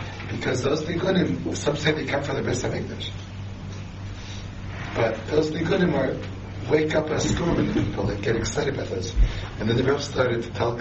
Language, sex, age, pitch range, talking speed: English, male, 60-79, 95-115 Hz, 185 wpm